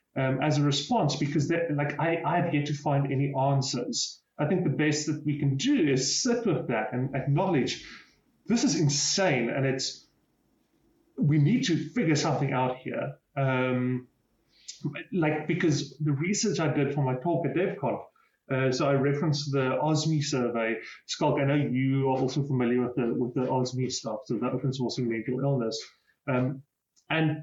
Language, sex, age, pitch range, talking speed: English, male, 30-49, 130-165 Hz, 170 wpm